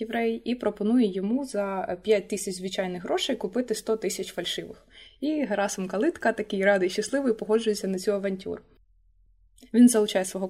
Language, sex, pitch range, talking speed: Ukrainian, female, 190-225 Hz, 155 wpm